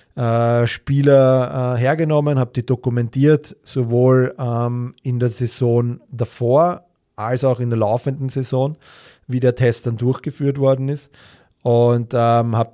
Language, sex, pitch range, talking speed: German, male, 115-130 Hz, 120 wpm